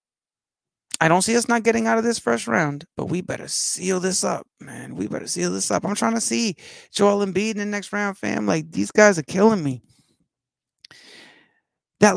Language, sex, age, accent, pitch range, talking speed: English, male, 30-49, American, 120-170 Hz, 200 wpm